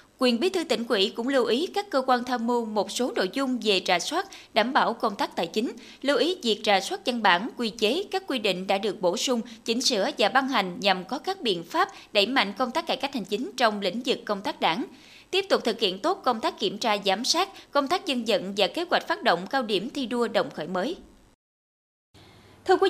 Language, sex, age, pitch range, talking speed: Vietnamese, female, 20-39, 210-285 Hz, 250 wpm